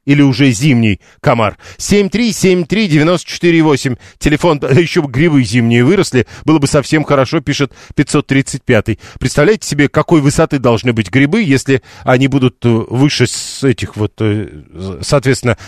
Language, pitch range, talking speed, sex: Russian, 125-165 Hz, 135 wpm, male